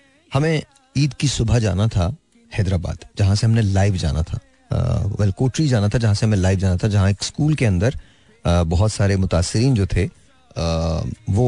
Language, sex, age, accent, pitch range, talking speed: Hindi, male, 30-49, native, 95-115 Hz, 195 wpm